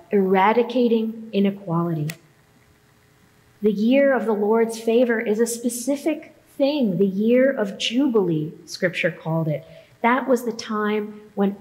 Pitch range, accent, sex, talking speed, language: 190-235 Hz, American, female, 125 wpm, English